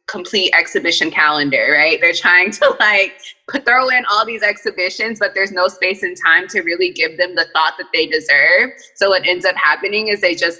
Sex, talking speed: female, 205 wpm